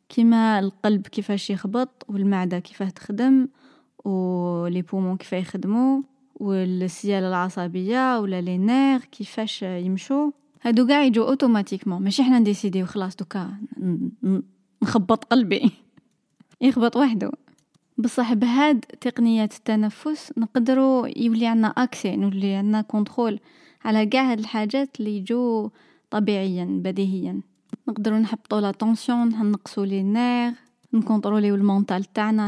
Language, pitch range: Arabic, 195-240 Hz